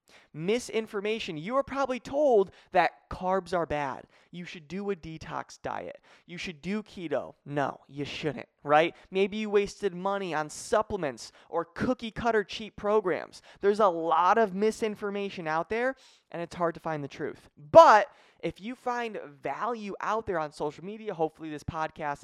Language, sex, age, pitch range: English, male, 20-39, 155-210 Hz